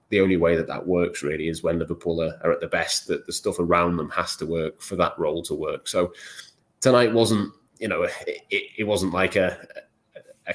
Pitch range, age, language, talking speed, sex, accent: 85-95 Hz, 20-39, English, 220 wpm, male, British